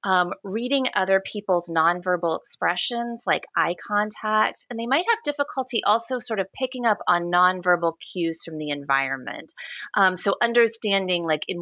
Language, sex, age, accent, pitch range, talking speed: English, female, 30-49, American, 160-225 Hz, 155 wpm